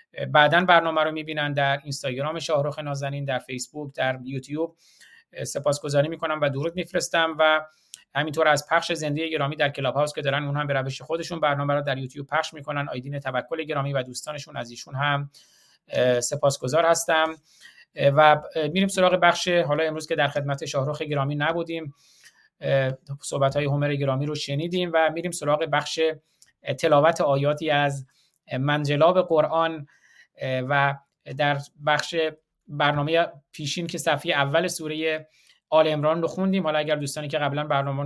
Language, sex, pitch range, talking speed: Persian, male, 140-160 Hz, 150 wpm